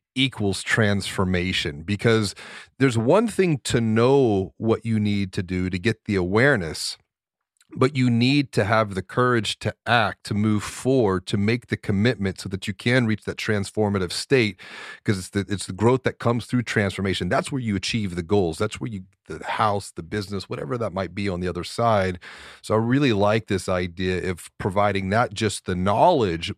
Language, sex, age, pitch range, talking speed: English, male, 40-59, 95-115 Hz, 190 wpm